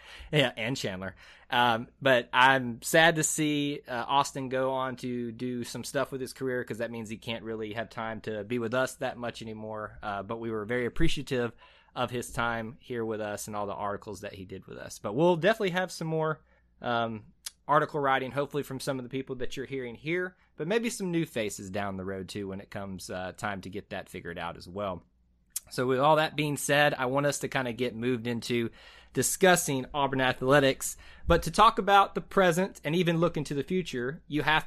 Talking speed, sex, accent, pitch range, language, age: 220 wpm, male, American, 110-145 Hz, English, 20-39